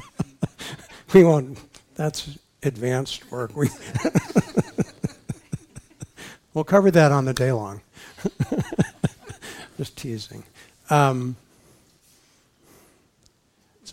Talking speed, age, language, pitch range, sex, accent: 70 wpm, 60-79, English, 110-135 Hz, male, American